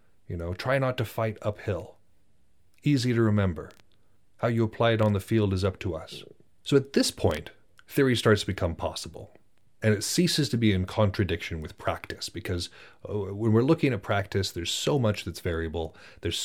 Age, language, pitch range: 30-49, English, 95-115 Hz